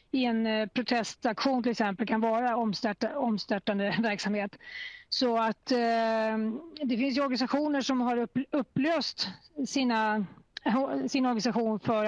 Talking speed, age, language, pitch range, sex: 125 wpm, 30-49, Swedish, 215-255 Hz, female